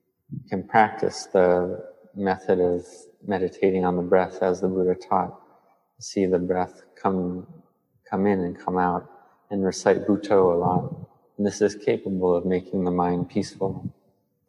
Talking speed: 150 wpm